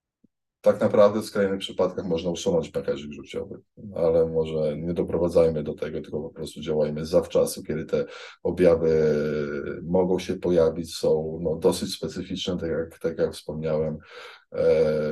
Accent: native